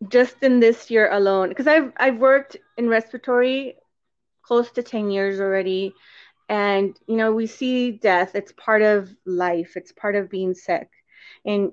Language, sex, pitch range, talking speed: English, female, 200-245 Hz, 165 wpm